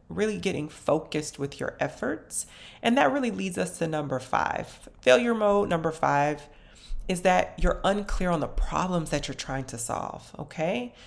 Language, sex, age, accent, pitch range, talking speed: English, female, 30-49, American, 140-180 Hz, 170 wpm